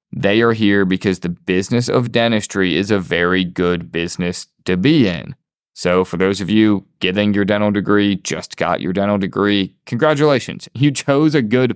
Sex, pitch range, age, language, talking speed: male, 95-120 Hz, 20-39, English, 180 wpm